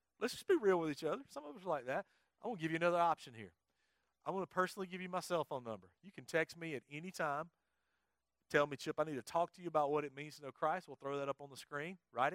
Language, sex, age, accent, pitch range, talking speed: English, male, 40-59, American, 100-150 Hz, 300 wpm